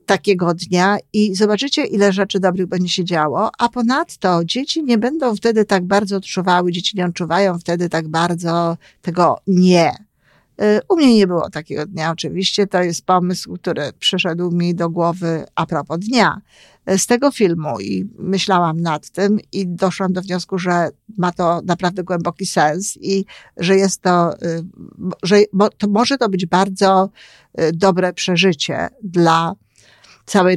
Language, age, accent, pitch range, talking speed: Polish, 50-69, native, 175-215 Hz, 145 wpm